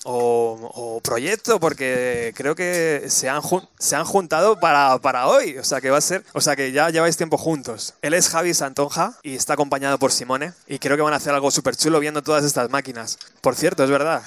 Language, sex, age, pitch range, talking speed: Spanish, male, 20-39, 135-165 Hz, 225 wpm